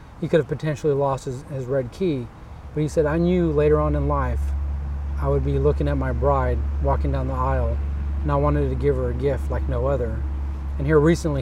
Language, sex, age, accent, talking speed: English, male, 30-49, American, 225 wpm